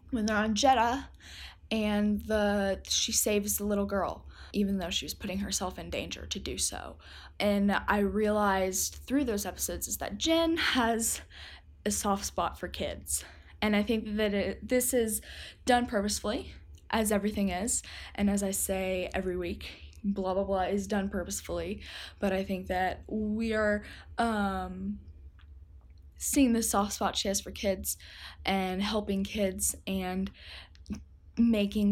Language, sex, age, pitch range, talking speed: English, female, 10-29, 175-215 Hz, 150 wpm